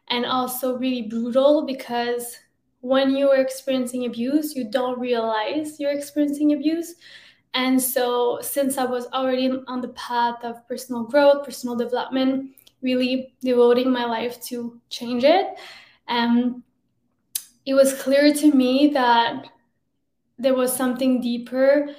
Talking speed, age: 130 wpm, 10-29